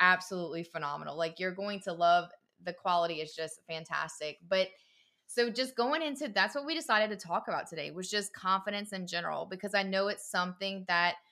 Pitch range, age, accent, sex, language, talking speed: 175-200 Hz, 20-39, American, female, English, 190 wpm